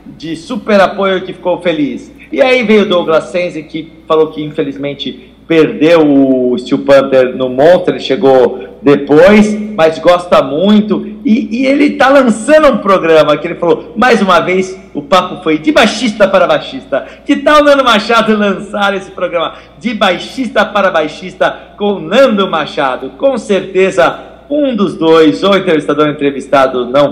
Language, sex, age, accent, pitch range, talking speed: Portuguese, male, 50-69, Brazilian, 155-215 Hz, 165 wpm